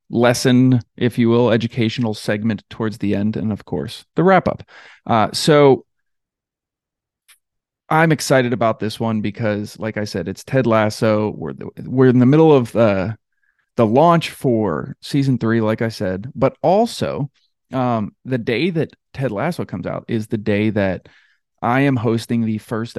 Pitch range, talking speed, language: 110-130 Hz, 160 wpm, English